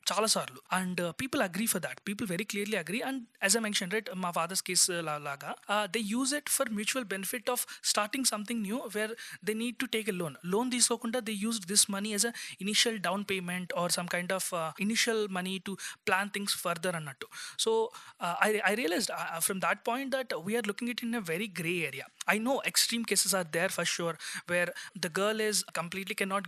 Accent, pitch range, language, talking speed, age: native, 180-225 Hz, Telugu, 225 wpm, 20-39